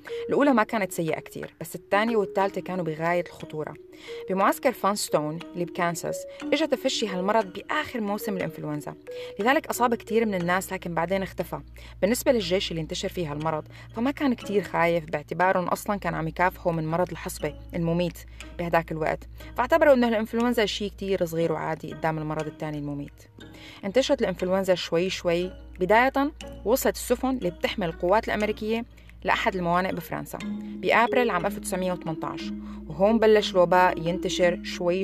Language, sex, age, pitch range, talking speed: Arabic, female, 30-49, 170-215 Hz, 145 wpm